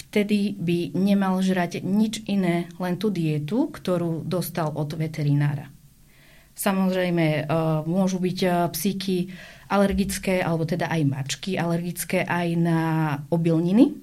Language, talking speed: Slovak, 110 wpm